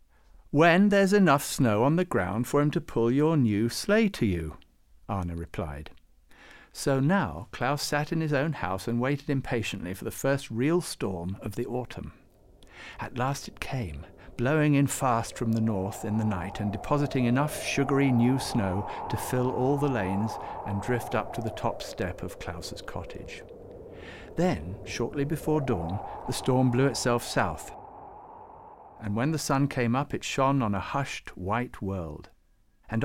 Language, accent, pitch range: English, British, 100-145 Hz